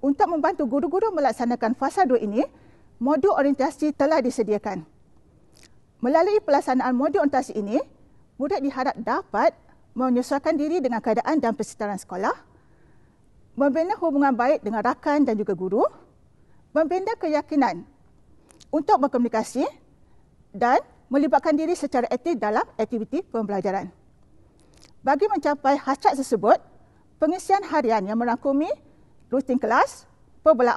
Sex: female